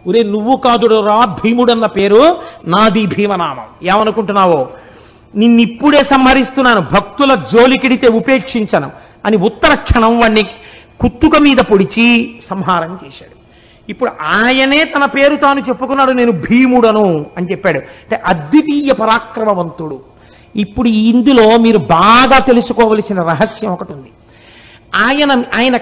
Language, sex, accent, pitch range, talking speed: Telugu, male, native, 170-260 Hz, 110 wpm